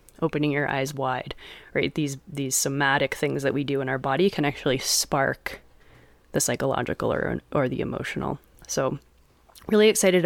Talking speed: 160 wpm